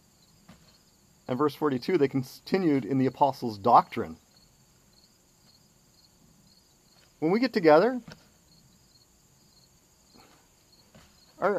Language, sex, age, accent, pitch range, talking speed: English, male, 40-59, American, 125-165 Hz, 70 wpm